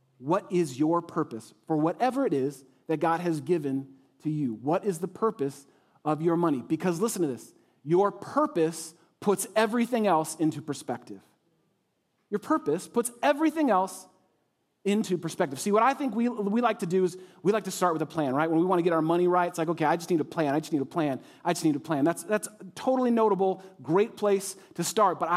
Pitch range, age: 160-200 Hz, 40-59